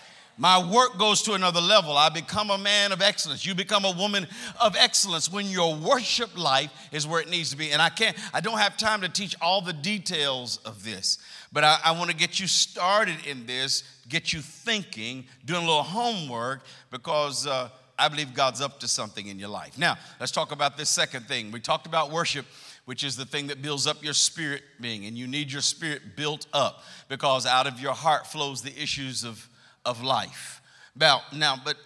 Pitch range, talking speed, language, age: 130-175 Hz, 210 wpm, English, 50-69